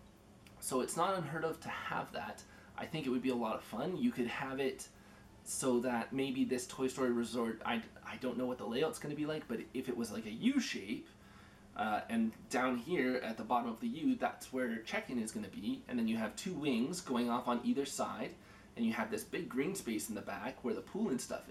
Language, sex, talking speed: English, male, 245 wpm